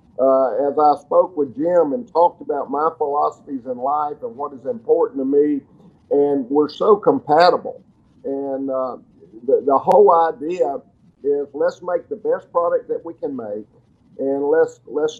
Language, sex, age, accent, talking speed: English, male, 50-69, American, 165 wpm